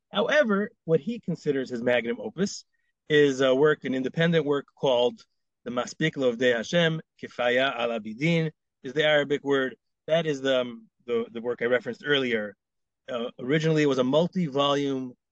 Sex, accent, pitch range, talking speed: male, American, 125-170 Hz, 165 wpm